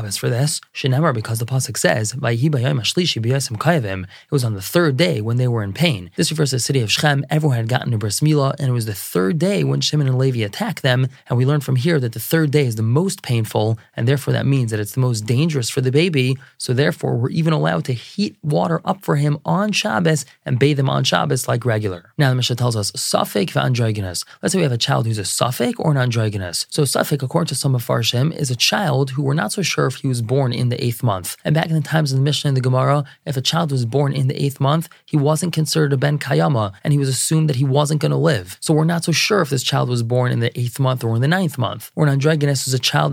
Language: English